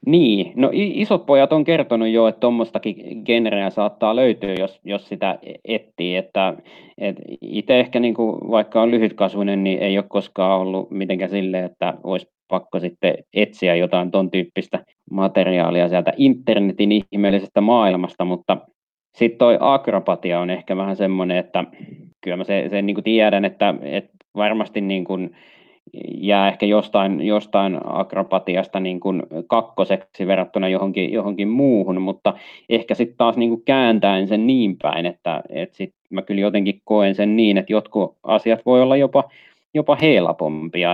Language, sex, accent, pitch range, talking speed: Finnish, male, native, 95-110 Hz, 150 wpm